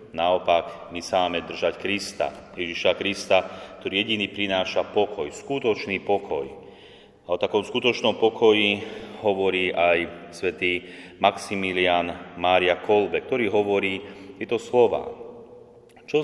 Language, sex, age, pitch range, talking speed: Slovak, male, 30-49, 90-105 Hz, 110 wpm